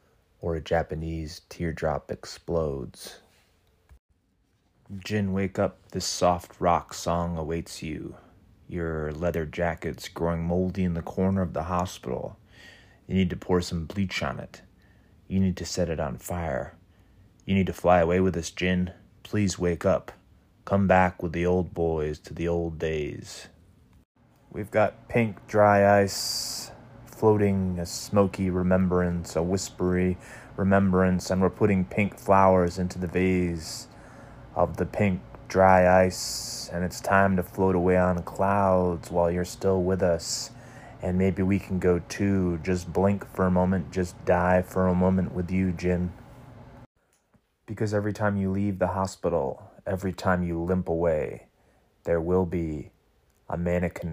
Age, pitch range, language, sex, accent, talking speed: 20-39, 85-95 Hz, English, male, American, 150 wpm